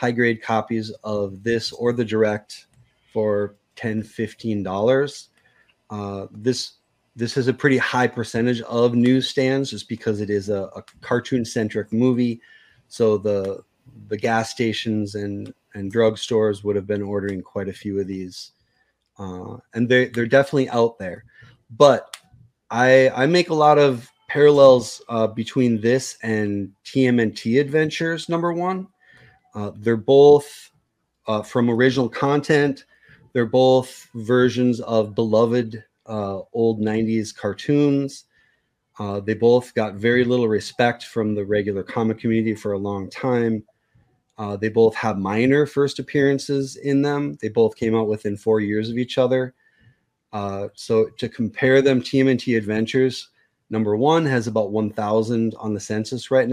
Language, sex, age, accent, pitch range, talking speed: English, male, 30-49, American, 105-130 Hz, 140 wpm